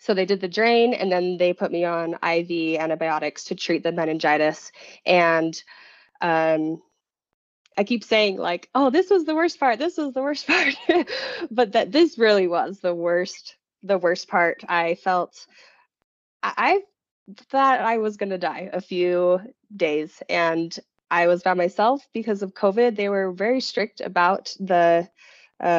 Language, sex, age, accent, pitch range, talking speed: English, female, 20-39, American, 180-225 Hz, 170 wpm